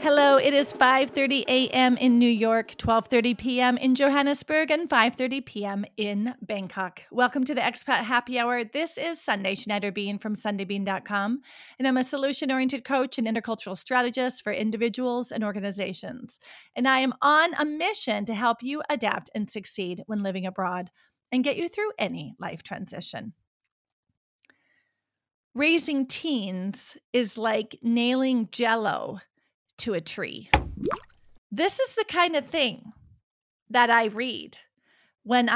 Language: English